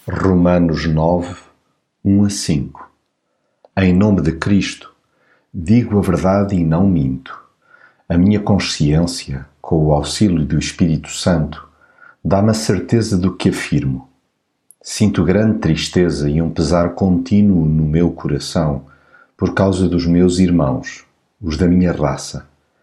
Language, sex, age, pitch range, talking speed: Portuguese, male, 50-69, 80-100 Hz, 130 wpm